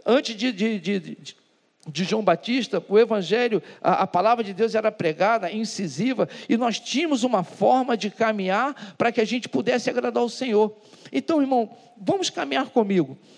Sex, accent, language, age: male, Brazilian, Portuguese, 50-69